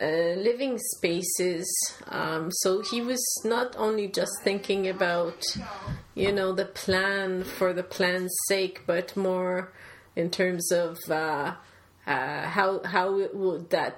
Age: 30-49